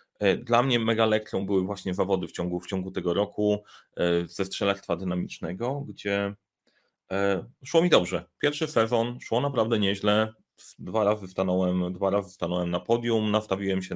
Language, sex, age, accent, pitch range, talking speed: Polish, male, 30-49, native, 95-115 Hz, 155 wpm